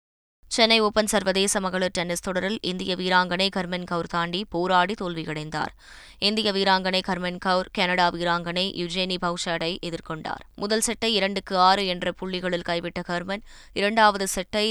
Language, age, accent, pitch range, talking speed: Tamil, 20-39, native, 175-200 Hz, 130 wpm